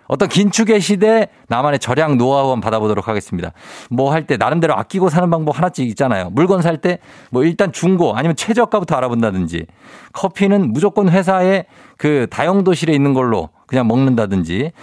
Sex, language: male, Korean